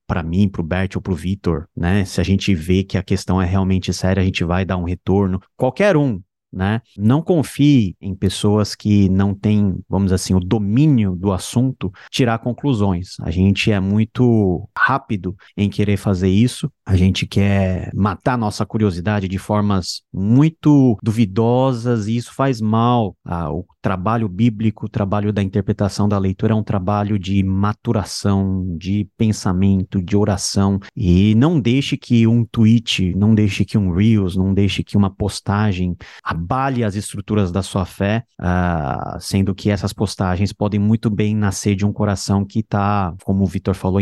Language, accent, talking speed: Portuguese, Brazilian, 170 wpm